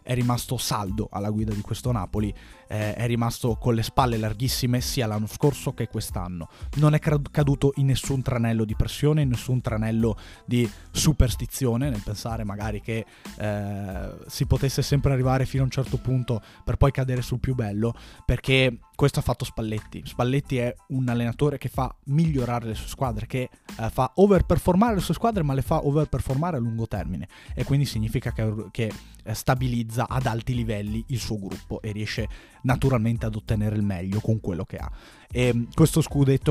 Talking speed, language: 180 wpm, Italian